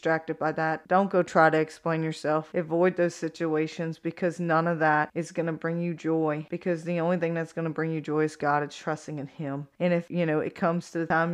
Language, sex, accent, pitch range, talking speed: English, female, American, 155-175 Hz, 255 wpm